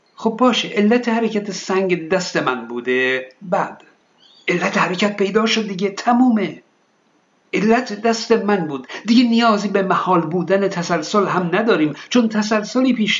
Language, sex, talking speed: Persian, male, 135 wpm